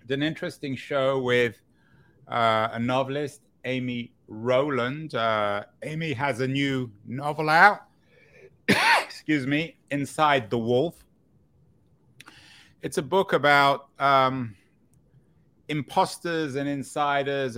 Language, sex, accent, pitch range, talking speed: English, male, British, 115-145 Hz, 100 wpm